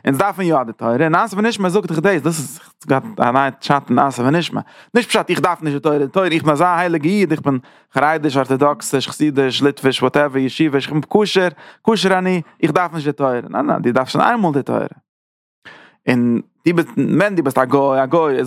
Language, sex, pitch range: English, male, 130-175 Hz